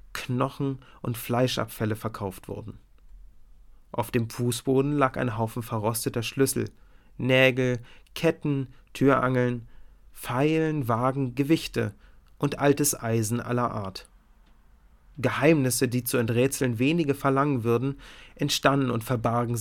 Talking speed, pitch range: 105 wpm, 115-140 Hz